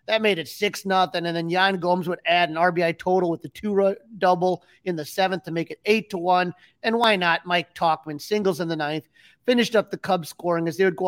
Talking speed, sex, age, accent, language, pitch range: 245 wpm, male, 30-49, American, English, 160-200 Hz